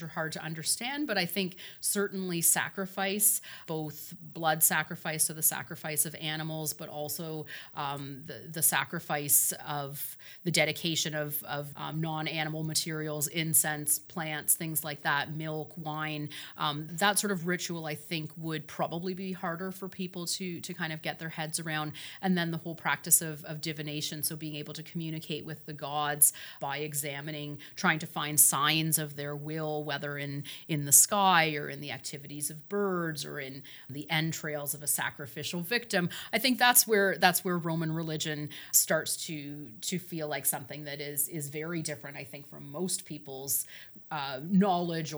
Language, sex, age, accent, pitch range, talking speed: English, female, 30-49, American, 150-180 Hz, 175 wpm